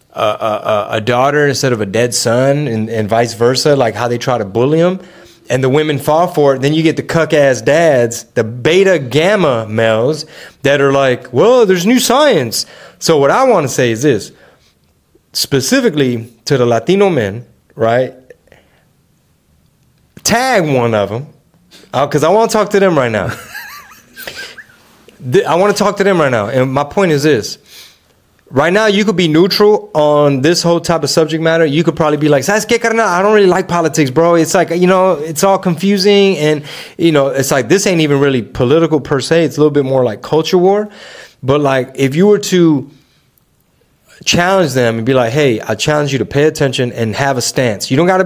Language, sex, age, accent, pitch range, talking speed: English, male, 30-49, American, 130-180 Hz, 200 wpm